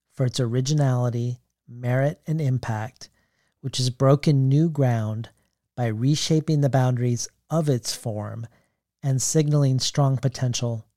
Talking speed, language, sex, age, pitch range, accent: 120 wpm, English, male, 40-59, 120-145 Hz, American